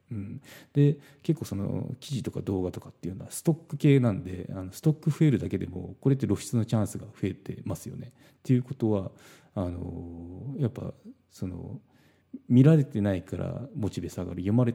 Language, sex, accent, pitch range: Japanese, male, native, 95-135 Hz